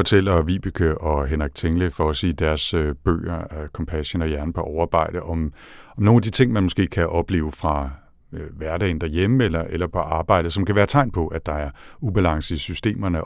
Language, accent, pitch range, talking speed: Danish, native, 80-95 Hz, 190 wpm